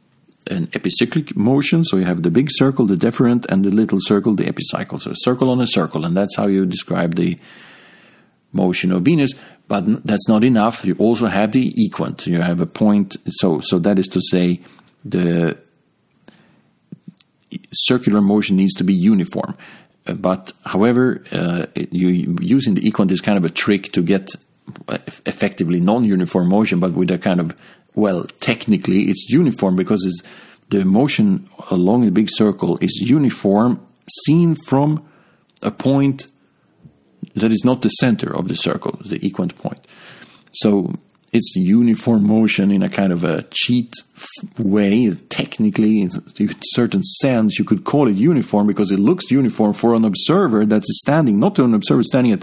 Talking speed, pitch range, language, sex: 165 wpm, 95-135 Hz, English, male